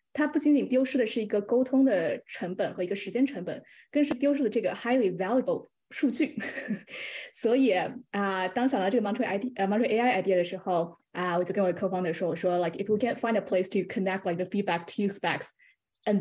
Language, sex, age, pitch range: Chinese, female, 20-39, 180-240 Hz